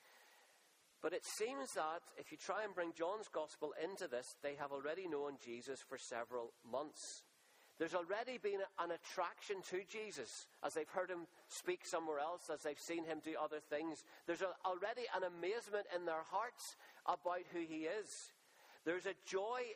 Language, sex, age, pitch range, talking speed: English, male, 40-59, 150-195 Hz, 175 wpm